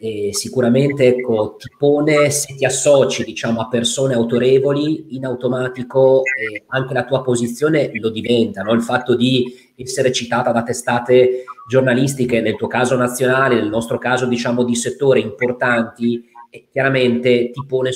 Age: 30-49